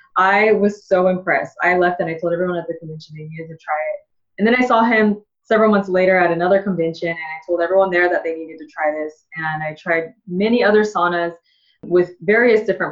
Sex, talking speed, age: female, 230 wpm, 20-39